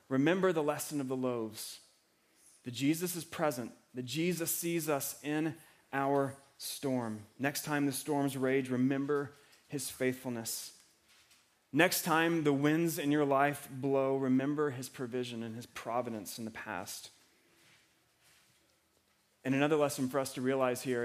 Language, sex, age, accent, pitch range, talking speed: English, male, 30-49, American, 130-160 Hz, 145 wpm